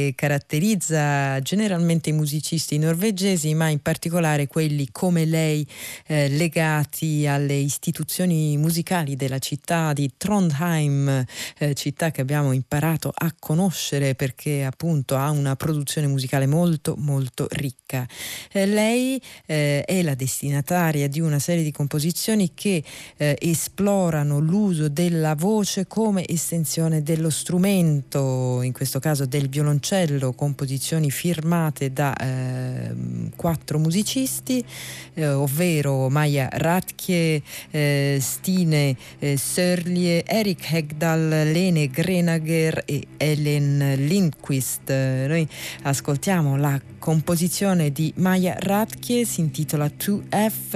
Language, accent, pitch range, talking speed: Italian, native, 140-175 Hz, 110 wpm